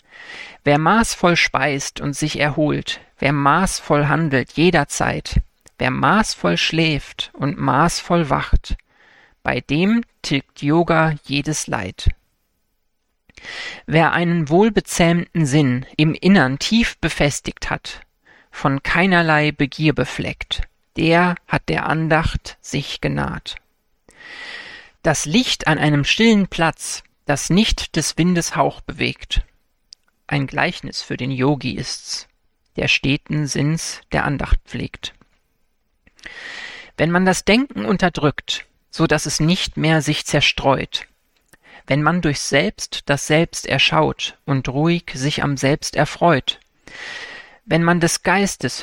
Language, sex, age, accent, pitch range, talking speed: German, male, 40-59, German, 145-180 Hz, 115 wpm